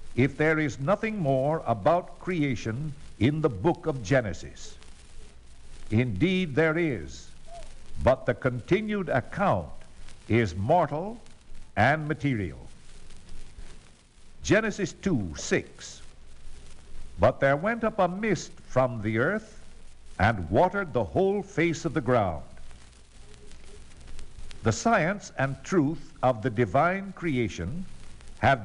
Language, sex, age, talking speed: English, male, 60-79, 110 wpm